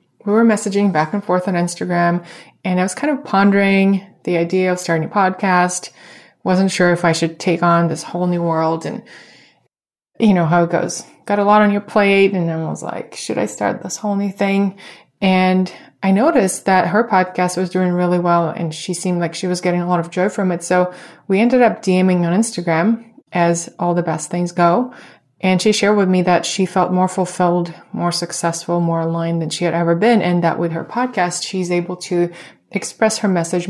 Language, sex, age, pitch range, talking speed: English, female, 20-39, 175-200 Hz, 215 wpm